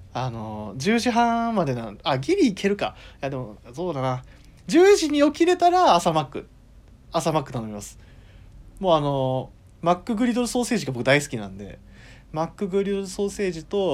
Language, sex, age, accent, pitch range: Japanese, male, 20-39, native, 120-190 Hz